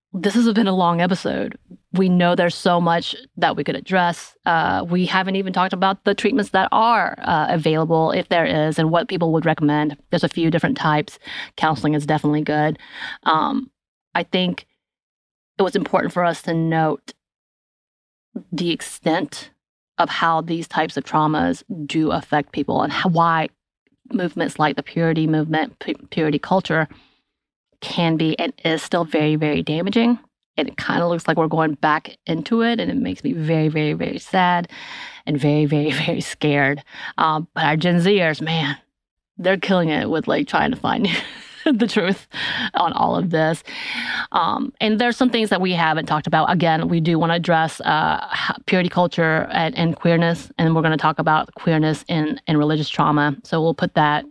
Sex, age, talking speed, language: female, 30-49, 180 wpm, English